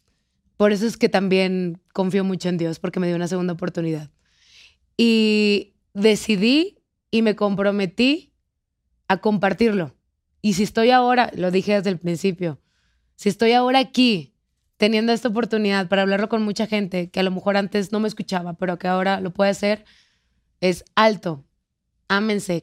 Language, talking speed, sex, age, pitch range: Spanish, 160 wpm, female, 20-39, 180-210 Hz